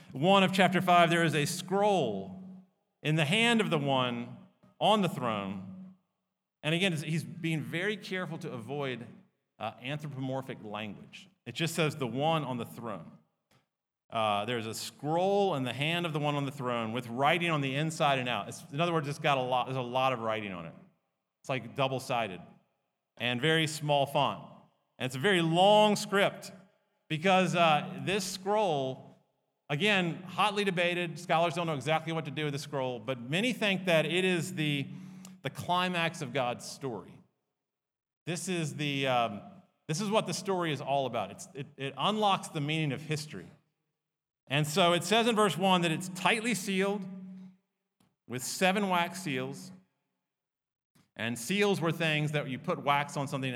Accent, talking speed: American, 175 wpm